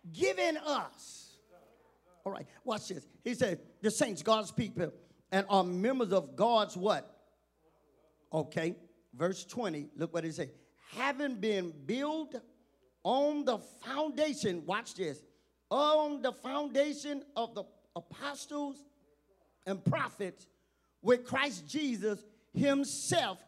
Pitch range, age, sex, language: 210-295 Hz, 40-59, male, English